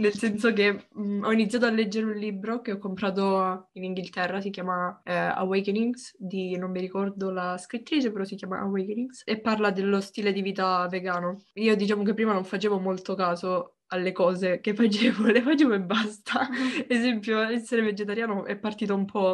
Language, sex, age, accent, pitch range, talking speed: Italian, female, 20-39, native, 190-220 Hz, 180 wpm